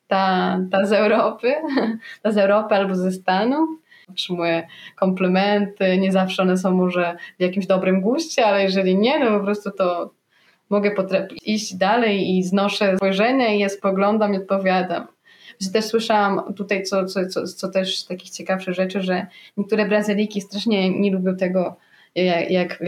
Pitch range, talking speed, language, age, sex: 180-195 Hz, 165 wpm, Polish, 20-39, female